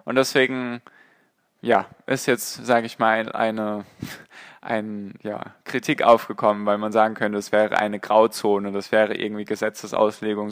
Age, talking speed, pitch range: 10-29, 145 wpm, 105-125 Hz